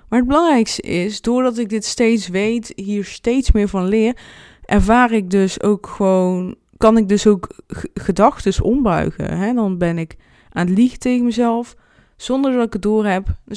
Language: Dutch